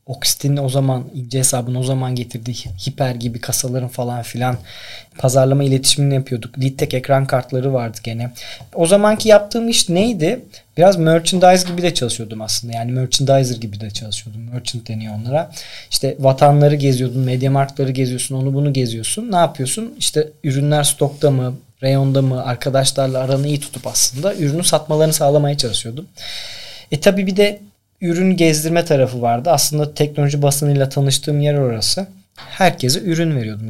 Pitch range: 125-155 Hz